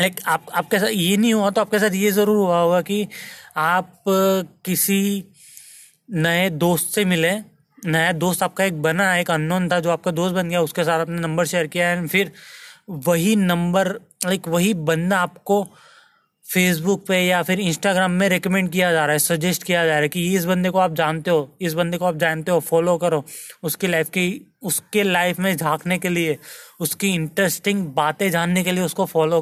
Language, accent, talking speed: Hindi, native, 195 wpm